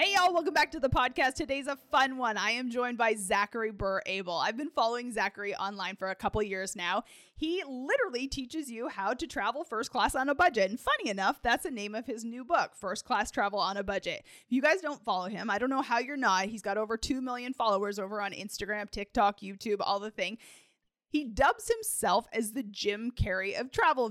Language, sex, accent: English, female, American